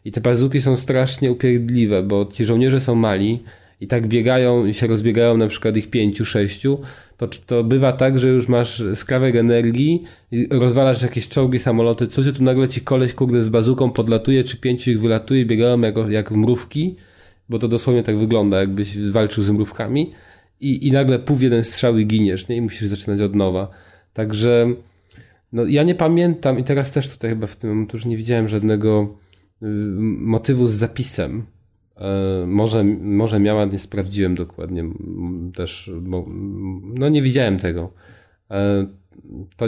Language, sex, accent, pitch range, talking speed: Polish, male, native, 100-125 Hz, 165 wpm